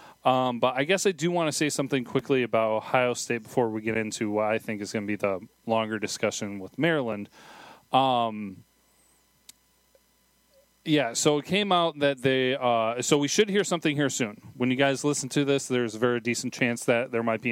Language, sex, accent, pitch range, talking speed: English, male, American, 110-140 Hz, 210 wpm